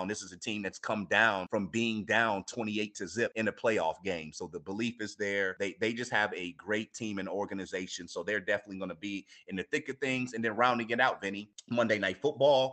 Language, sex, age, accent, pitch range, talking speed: English, male, 30-49, American, 95-105 Hz, 240 wpm